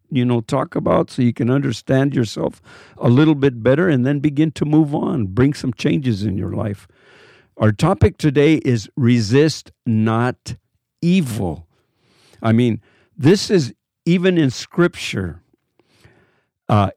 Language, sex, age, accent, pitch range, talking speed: English, male, 50-69, American, 110-155 Hz, 140 wpm